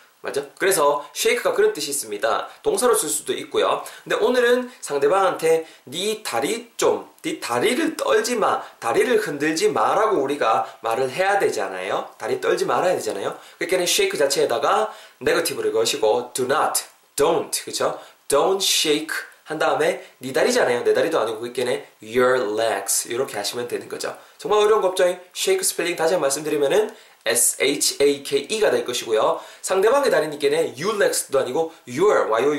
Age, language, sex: 20-39, Korean, male